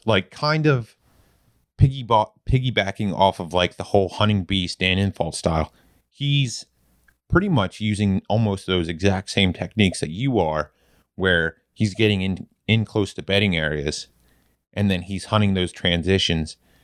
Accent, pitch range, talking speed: American, 85-105 Hz, 150 wpm